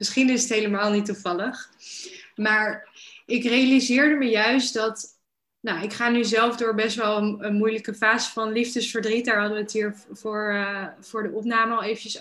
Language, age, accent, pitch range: Dutch, 20-39, Dutch, 210-240 Hz